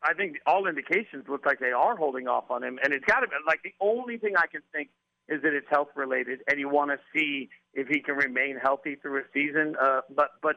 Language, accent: English, American